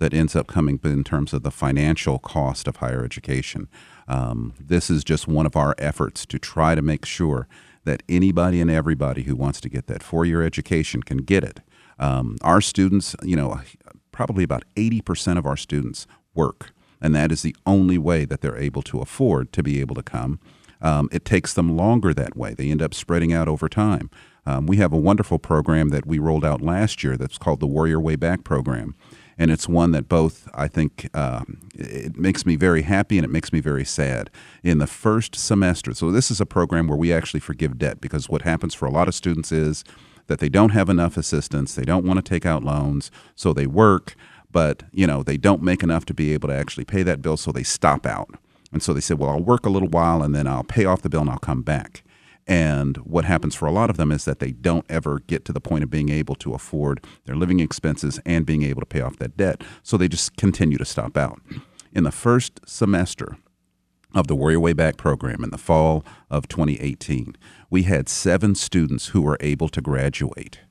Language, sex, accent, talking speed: English, male, American, 225 wpm